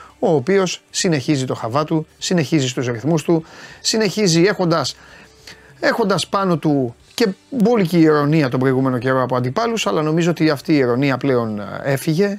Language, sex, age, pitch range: Greek, male, 30-49, 130-165 Hz